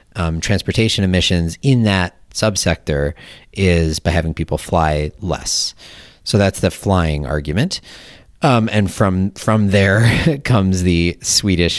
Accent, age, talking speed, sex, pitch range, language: American, 30-49, 125 wpm, male, 80-105 Hz, English